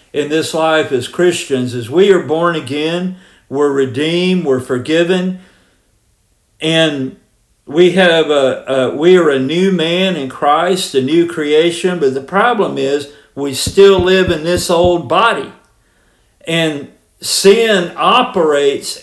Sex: male